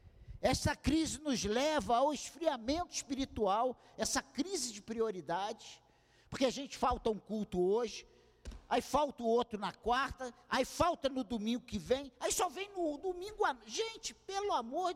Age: 50-69